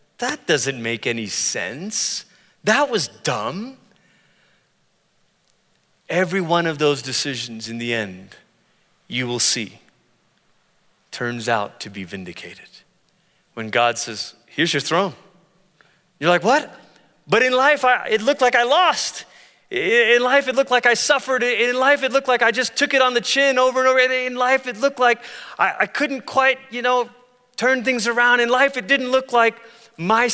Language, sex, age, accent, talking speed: English, male, 30-49, American, 170 wpm